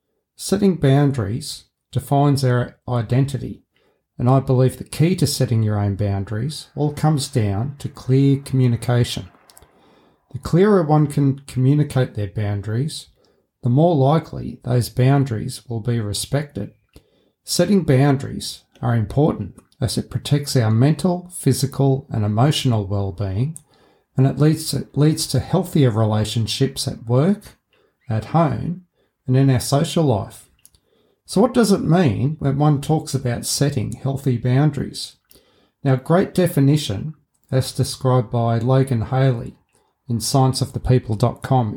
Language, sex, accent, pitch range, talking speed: English, male, Australian, 120-145 Hz, 125 wpm